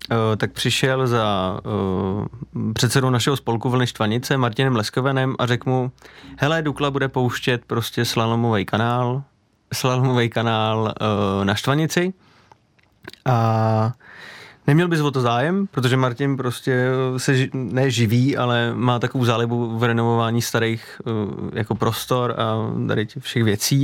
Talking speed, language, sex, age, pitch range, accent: 130 wpm, Czech, male, 30-49, 115-130 Hz, native